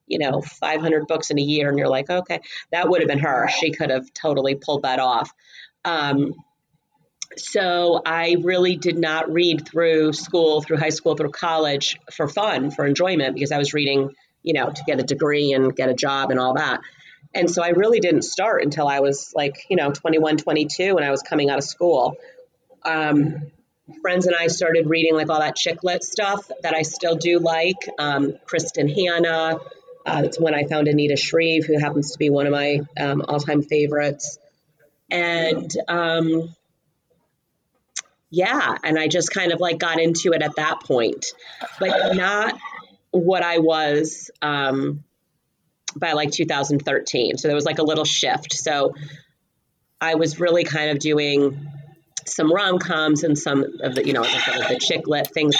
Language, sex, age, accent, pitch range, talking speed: English, female, 30-49, American, 145-165 Hz, 180 wpm